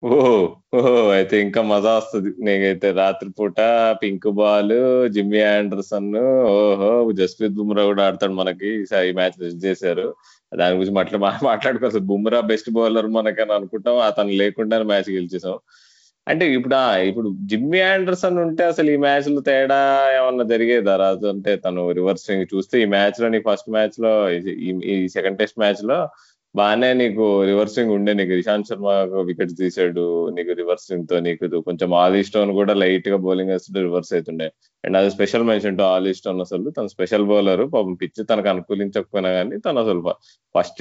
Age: 20-39